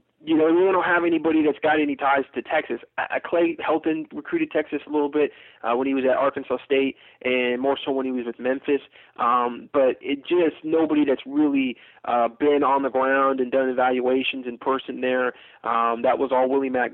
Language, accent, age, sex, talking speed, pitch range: English, American, 20-39, male, 210 wpm, 125-145 Hz